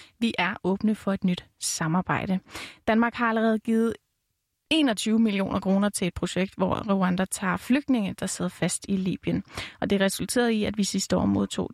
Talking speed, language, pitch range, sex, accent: 180 wpm, Danish, 185-230 Hz, female, native